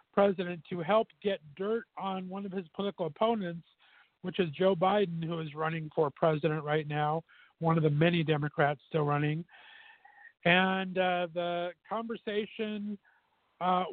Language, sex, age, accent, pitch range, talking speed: English, male, 50-69, American, 165-200 Hz, 145 wpm